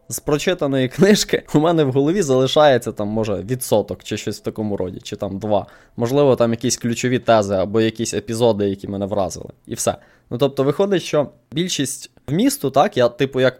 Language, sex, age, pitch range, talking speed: Ukrainian, male, 20-39, 115-145 Hz, 185 wpm